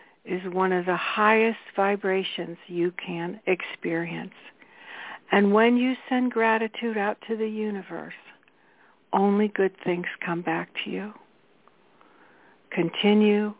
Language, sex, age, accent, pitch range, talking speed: English, female, 60-79, American, 180-220 Hz, 115 wpm